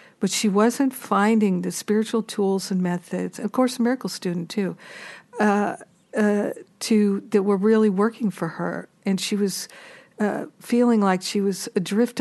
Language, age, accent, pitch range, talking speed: English, 50-69, American, 185-215 Hz, 160 wpm